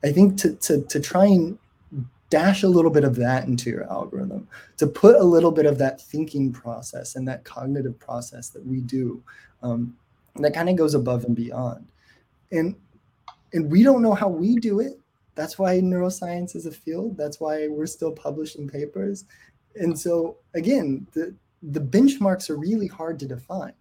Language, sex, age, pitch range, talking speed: English, male, 20-39, 125-170 Hz, 180 wpm